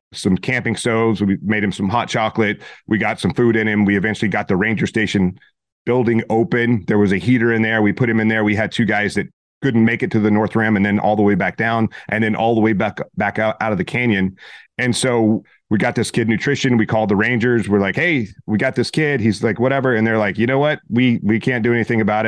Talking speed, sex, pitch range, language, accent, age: 265 wpm, male, 105-120 Hz, English, American, 30-49